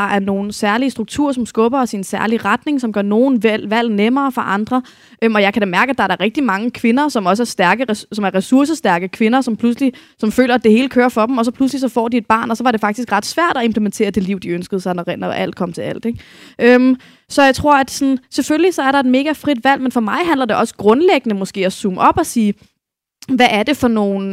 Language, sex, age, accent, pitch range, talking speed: Danish, female, 20-39, native, 205-255 Hz, 275 wpm